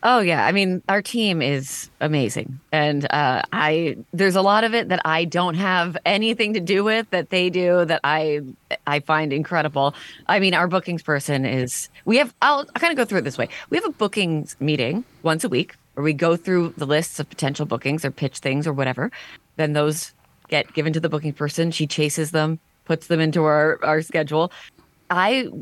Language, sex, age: English, female, 30-49